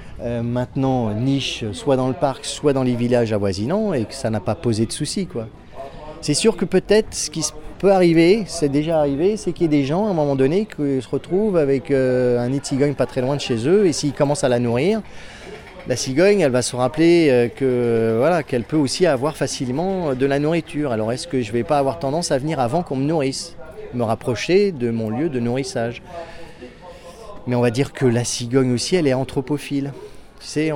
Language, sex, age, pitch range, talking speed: French, male, 30-49, 120-155 Hz, 225 wpm